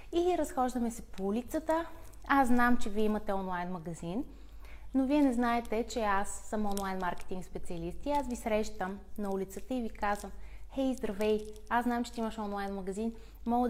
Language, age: Bulgarian, 20-39